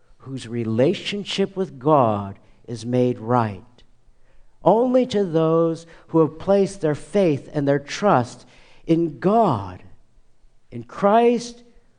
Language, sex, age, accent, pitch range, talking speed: English, male, 50-69, American, 120-185 Hz, 110 wpm